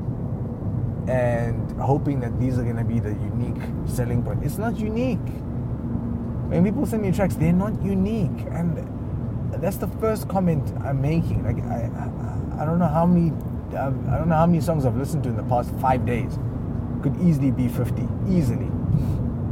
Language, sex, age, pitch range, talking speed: English, male, 20-39, 120-145 Hz, 170 wpm